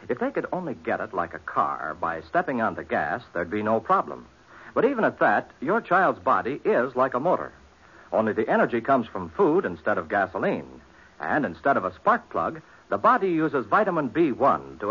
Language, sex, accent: English, male, American